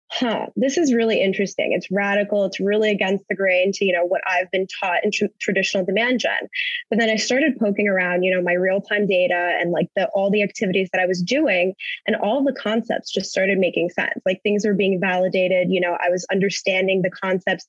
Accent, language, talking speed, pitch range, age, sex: American, English, 225 wpm, 190-235 Hz, 20-39, female